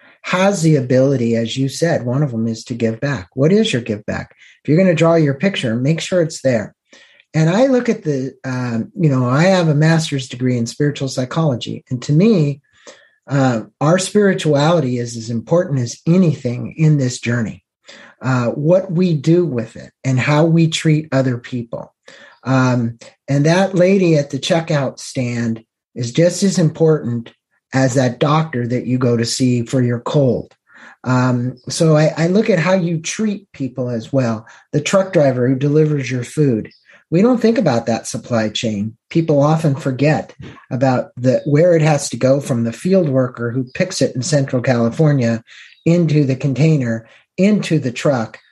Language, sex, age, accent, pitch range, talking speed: English, male, 50-69, American, 125-165 Hz, 180 wpm